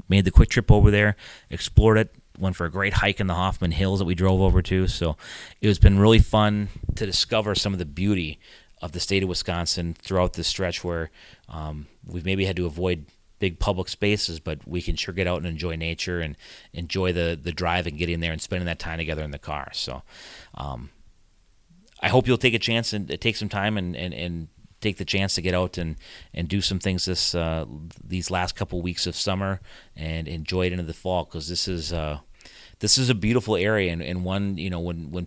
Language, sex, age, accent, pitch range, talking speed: English, male, 30-49, American, 85-100 Hz, 230 wpm